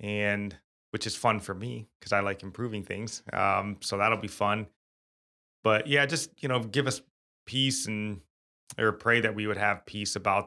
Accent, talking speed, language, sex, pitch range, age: American, 190 wpm, English, male, 100-120 Hz, 20-39